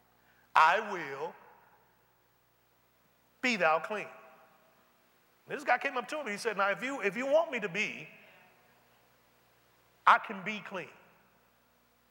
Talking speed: 130 wpm